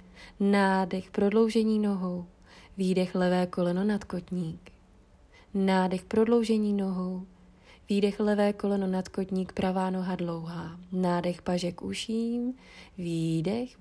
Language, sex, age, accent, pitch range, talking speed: Czech, female, 20-39, native, 165-200 Hz, 100 wpm